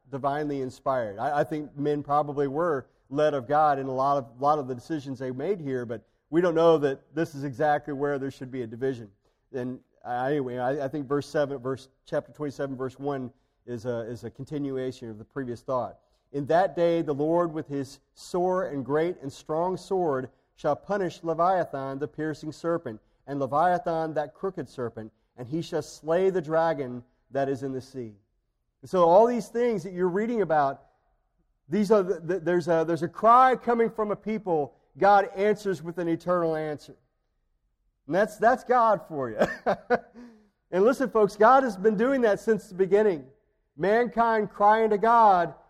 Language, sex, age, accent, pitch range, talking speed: English, male, 40-59, American, 140-205 Hz, 185 wpm